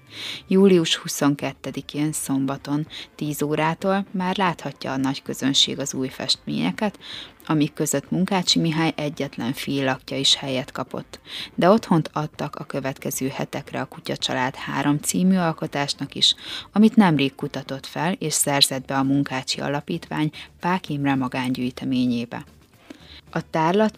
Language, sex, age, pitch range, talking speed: Hungarian, female, 30-49, 135-175 Hz, 125 wpm